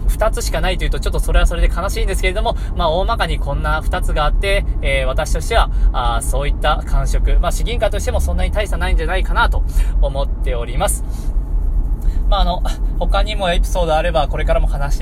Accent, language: native, Japanese